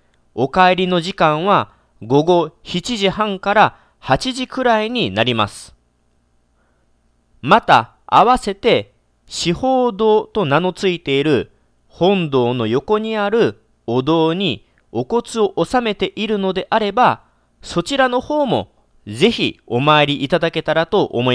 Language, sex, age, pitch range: Japanese, male, 40-59, 125-200 Hz